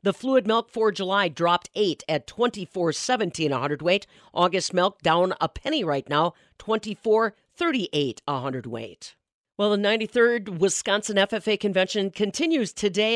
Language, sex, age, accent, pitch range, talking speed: English, female, 50-69, American, 165-215 Hz, 145 wpm